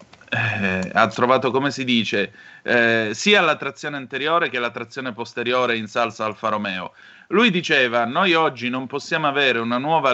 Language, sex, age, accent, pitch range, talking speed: Italian, male, 30-49, native, 115-160 Hz, 165 wpm